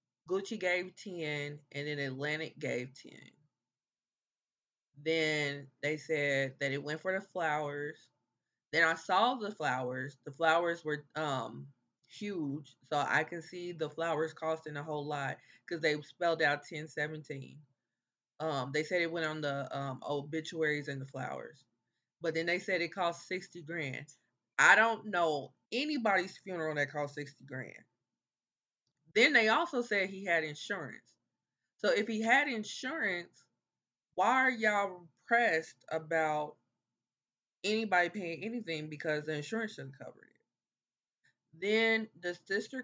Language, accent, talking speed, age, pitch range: English, American, 140 wpm, 20-39, 145-175 Hz